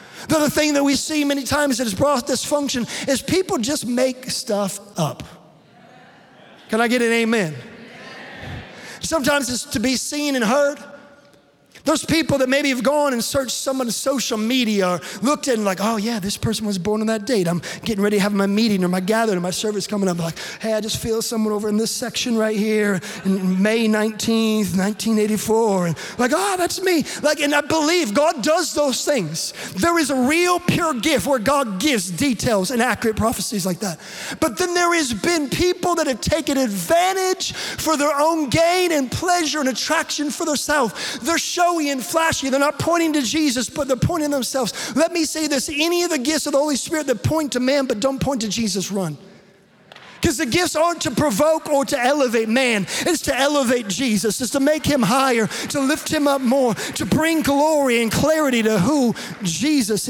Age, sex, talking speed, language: 30-49, male, 200 wpm, English